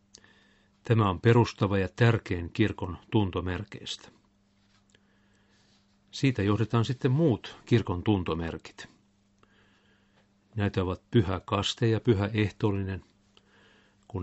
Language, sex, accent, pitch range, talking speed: Finnish, male, native, 100-110 Hz, 90 wpm